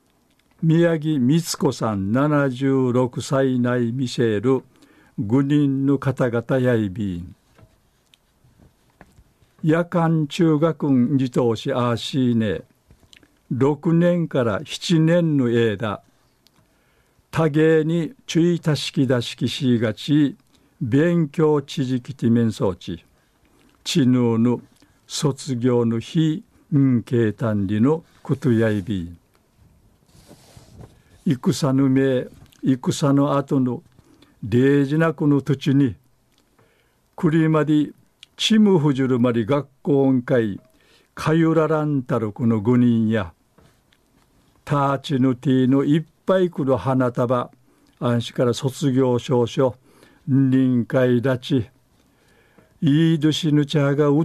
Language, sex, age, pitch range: Japanese, male, 60-79, 120-150 Hz